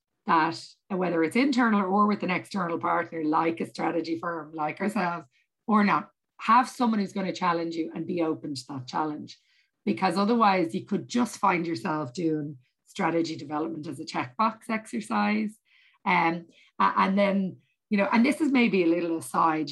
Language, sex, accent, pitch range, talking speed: English, female, Irish, 165-205 Hz, 170 wpm